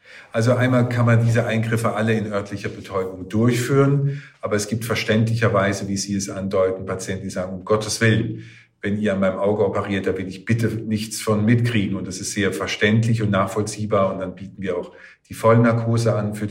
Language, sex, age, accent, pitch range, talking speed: German, male, 50-69, German, 100-110 Hz, 195 wpm